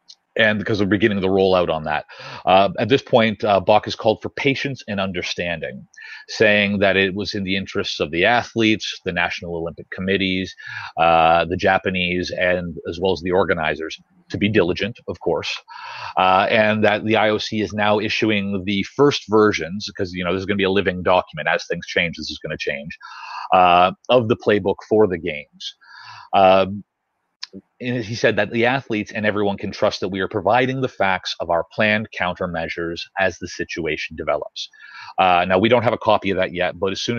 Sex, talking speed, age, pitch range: male, 200 wpm, 30-49, 90-110 Hz